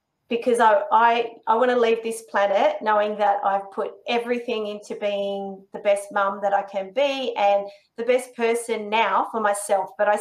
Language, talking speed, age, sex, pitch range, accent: English, 190 wpm, 30-49, female, 205-245 Hz, Australian